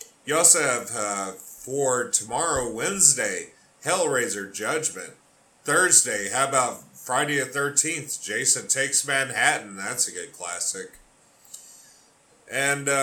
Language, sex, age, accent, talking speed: English, male, 30-49, American, 105 wpm